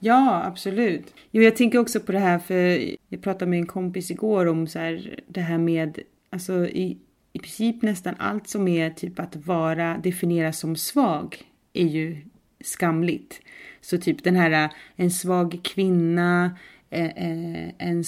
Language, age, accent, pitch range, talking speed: English, 30-49, Swedish, 160-185 Hz, 155 wpm